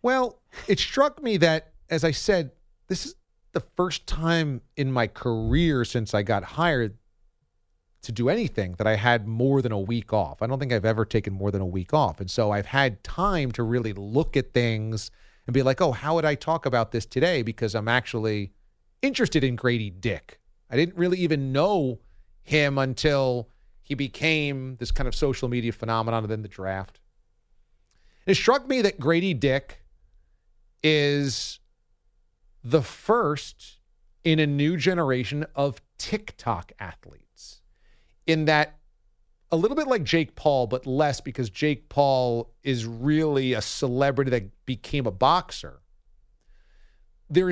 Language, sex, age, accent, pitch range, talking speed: English, male, 40-59, American, 110-155 Hz, 160 wpm